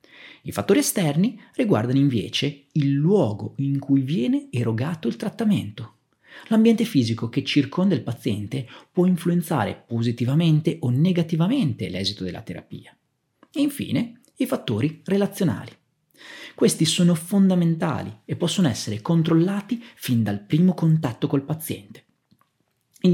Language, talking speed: Italian, 120 wpm